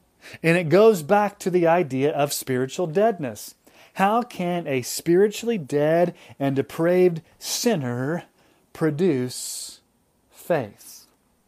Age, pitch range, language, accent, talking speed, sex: 30-49, 140-190 Hz, English, American, 105 wpm, male